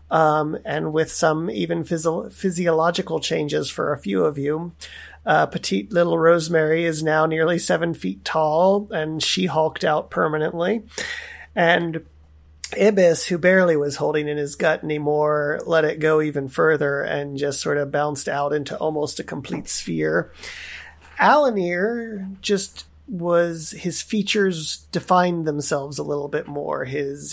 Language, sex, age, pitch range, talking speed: English, male, 30-49, 150-190 Hz, 145 wpm